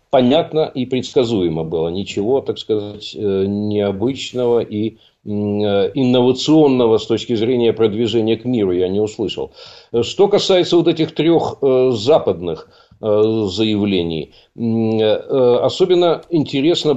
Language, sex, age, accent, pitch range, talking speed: Russian, male, 50-69, native, 105-155 Hz, 100 wpm